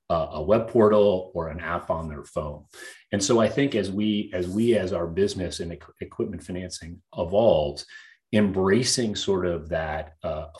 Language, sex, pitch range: English, male, 85-115 Hz